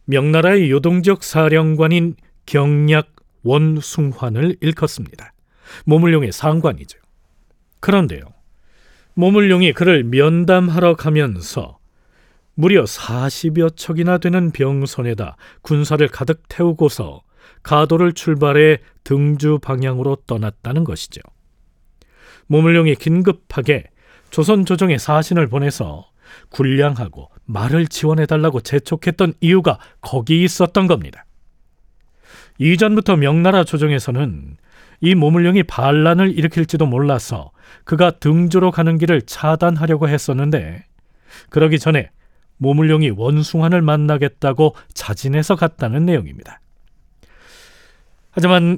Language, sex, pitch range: Korean, male, 135-170 Hz